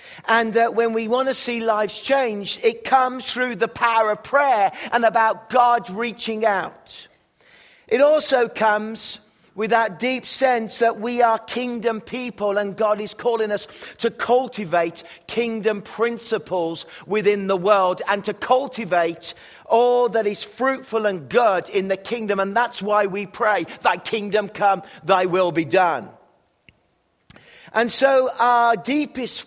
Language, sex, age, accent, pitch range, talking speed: English, male, 50-69, British, 195-235 Hz, 150 wpm